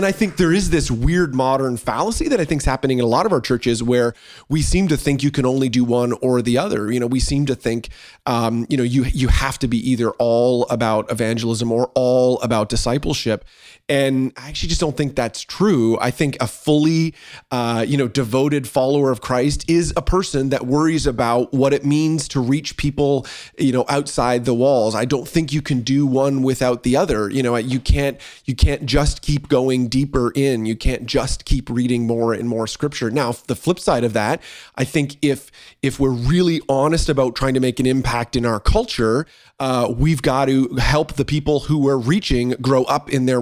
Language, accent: English, American